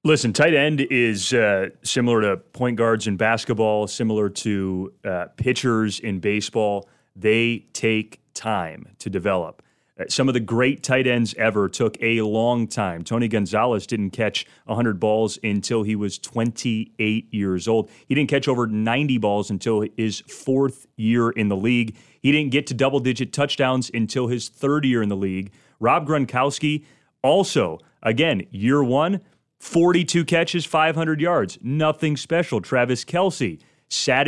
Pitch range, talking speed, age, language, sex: 110-135 Hz, 150 wpm, 30-49, English, male